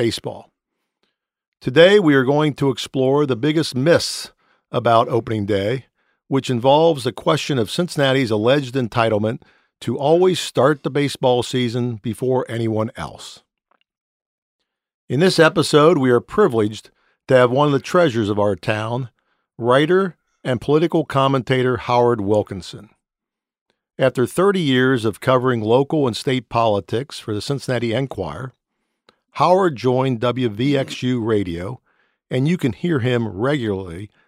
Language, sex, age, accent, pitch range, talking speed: English, male, 50-69, American, 115-140 Hz, 130 wpm